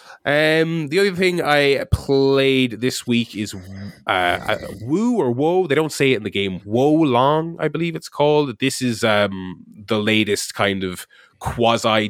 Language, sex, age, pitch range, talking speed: English, male, 20-39, 100-140 Hz, 170 wpm